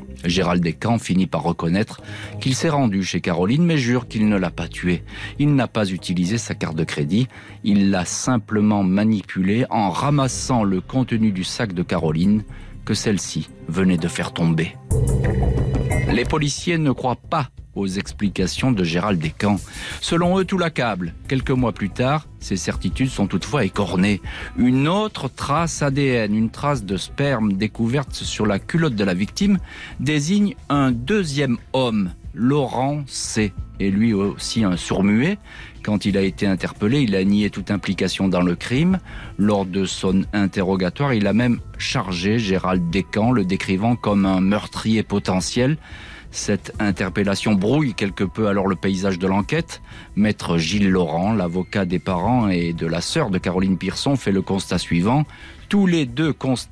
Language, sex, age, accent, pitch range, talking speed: French, male, 40-59, French, 95-130 Hz, 160 wpm